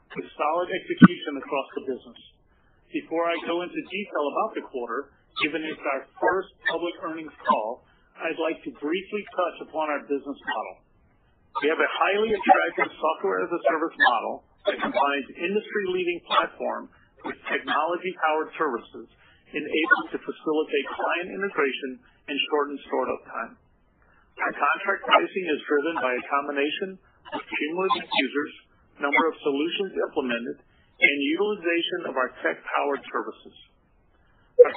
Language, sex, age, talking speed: English, male, 40-59, 140 wpm